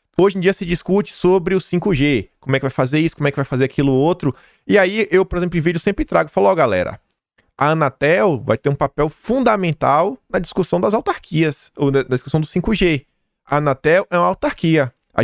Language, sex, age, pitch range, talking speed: Portuguese, male, 20-39, 145-190 Hz, 220 wpm